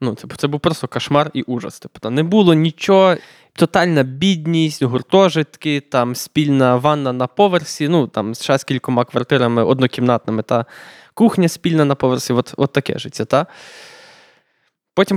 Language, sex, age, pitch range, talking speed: Ukrainian, male, 20-39, 130-175 Hz, 150 wpm